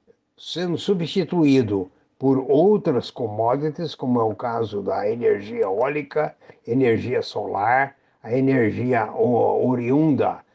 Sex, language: male, Portuguese